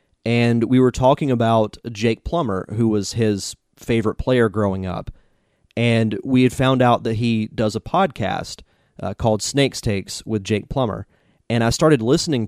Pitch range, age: 105-125 Hz, 30-49